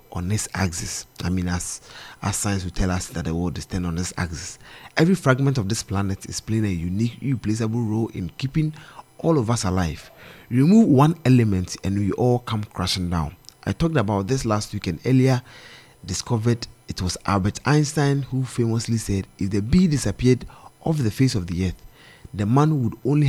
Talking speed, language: 190 wpm, English